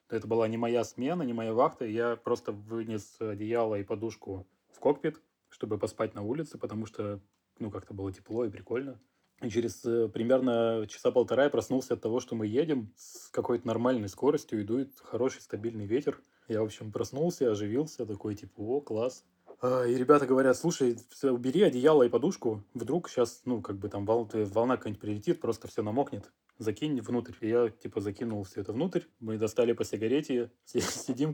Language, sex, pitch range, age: Russian, male, 110-125 Hz, 20-39